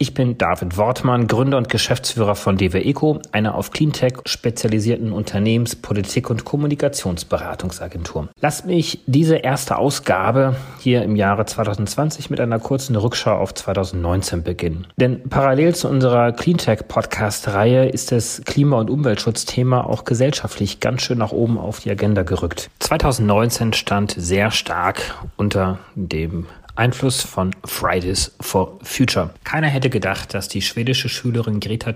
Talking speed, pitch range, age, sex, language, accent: 135 wpm, 95-125 Hz, 30-49, male, German, German